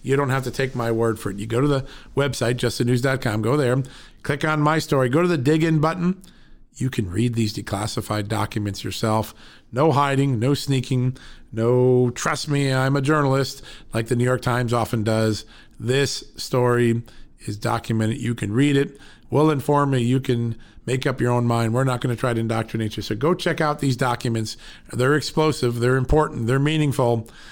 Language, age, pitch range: English, 50-69, 110-135 Hz